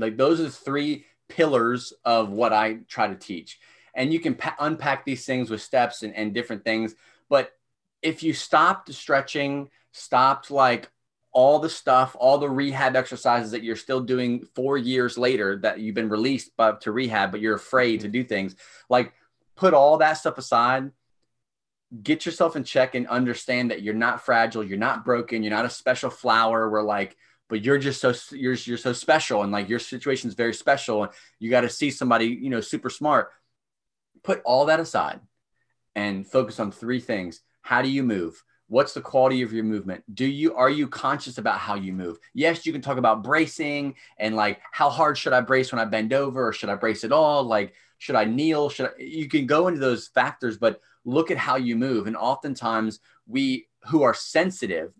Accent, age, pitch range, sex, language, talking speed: American, 30-49, 110-140 Hz, male, English, 200 wpm